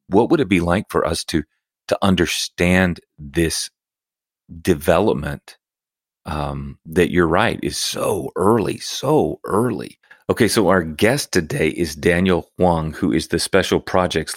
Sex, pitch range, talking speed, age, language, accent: male, 85-100 Hz, 140 wpm, 40-59, English, American